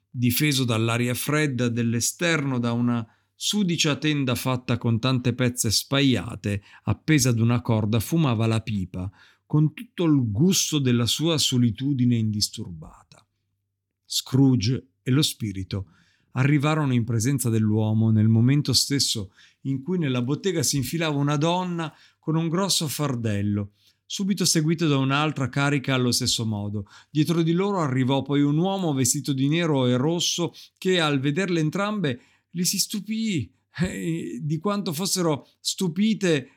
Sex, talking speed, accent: male, 135 wpm, native